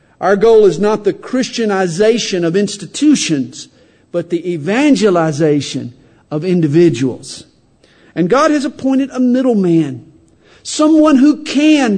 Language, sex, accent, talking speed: English, male, American, 110 wpm